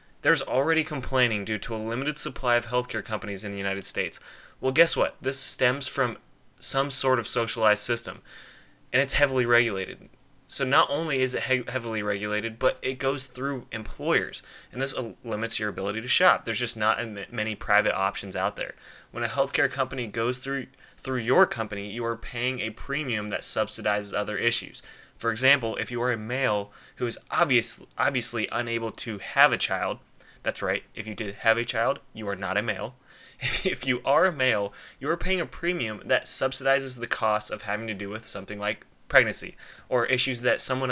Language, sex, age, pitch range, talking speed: English, male, 20-39, 110-135 Hz, 190 wpm